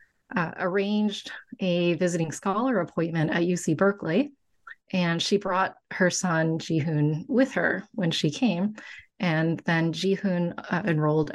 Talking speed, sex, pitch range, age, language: 130 wpm, female, 165-210 Hz, 30-49, English